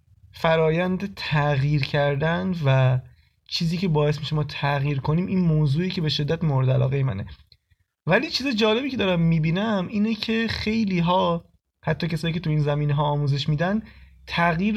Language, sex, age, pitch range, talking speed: Persian, male, 20-39, 145-180 Hz, 160 wpm